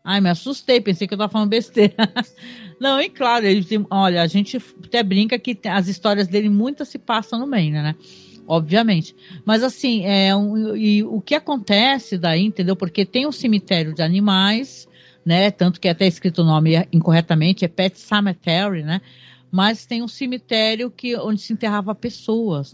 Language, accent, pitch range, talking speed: Portuguese, Brazilian, 170-225 Hz, 165 wpm